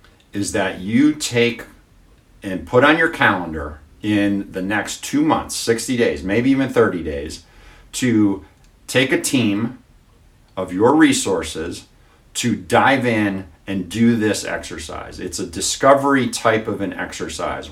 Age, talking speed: 50-69, 140 wpm